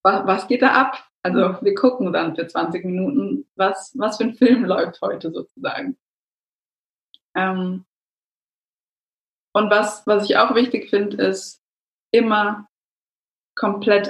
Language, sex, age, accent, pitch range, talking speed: German, female, 20-39, German, 185-240 Hz, 130 wpm